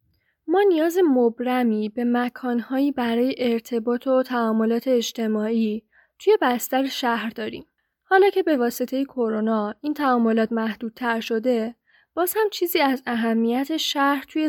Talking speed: 135 wpm